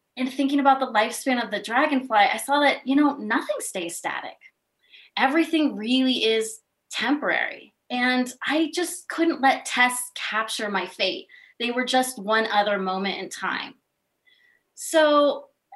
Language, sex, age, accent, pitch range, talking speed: English, female, 20-39, American, 205-265 Hz, 145 wpm